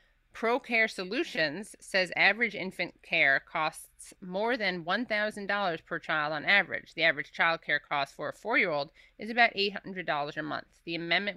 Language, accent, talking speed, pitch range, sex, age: English, American, 155 wpm, 160-195 Hz, female, 30-49